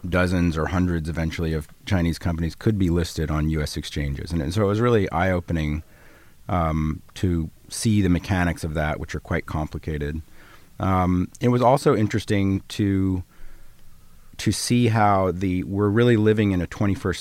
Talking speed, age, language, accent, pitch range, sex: 165 wpm, 40-59, English, American, 80-100 Hz, male